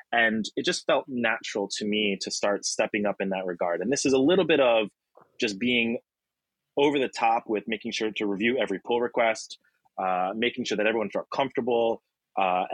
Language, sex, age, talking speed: English, male, 30-49, 200 wpm